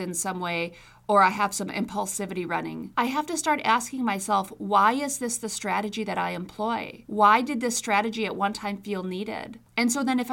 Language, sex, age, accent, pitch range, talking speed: English, female, 40-59, American, 190-230 Hz, 210 wpm